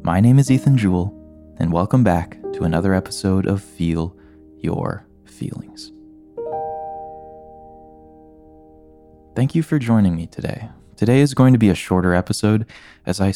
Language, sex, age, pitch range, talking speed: English, male, 20-39, 85-115 Hz, 140 wpm